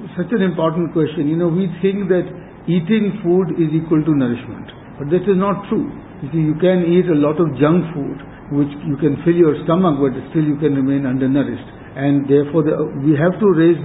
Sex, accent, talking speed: male, Indian, 210 wpm